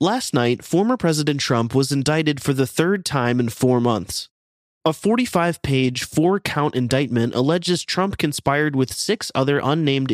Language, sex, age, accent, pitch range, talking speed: English, male, 20-39, American, 125-165 Hz, 150 wpm